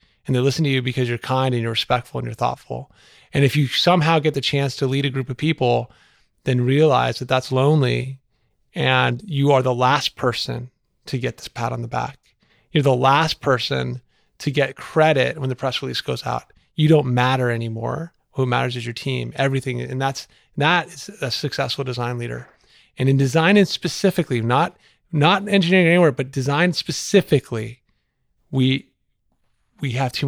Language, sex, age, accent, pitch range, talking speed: English, male, 30-49, American, 125-145 Hz, 180 wpm